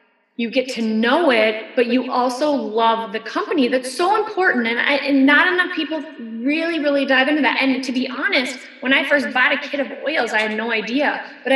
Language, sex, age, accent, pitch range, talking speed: English, female, 20-39, American, 230-275 Hz, 220 wpm